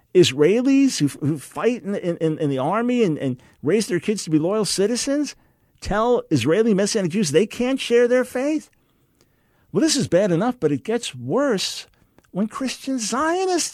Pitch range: 130-205 Hz